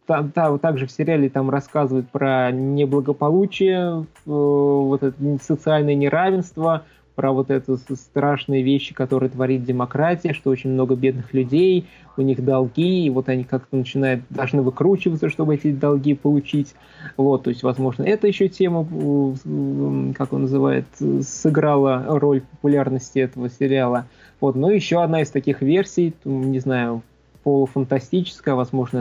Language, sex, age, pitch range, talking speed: Russian, male, 20-39, 130-155 Hz, 135 wpm